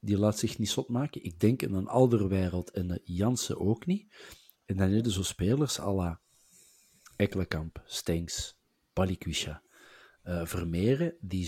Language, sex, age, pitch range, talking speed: Dutch, male, 50-69, 90-115 Hz, 155 wpm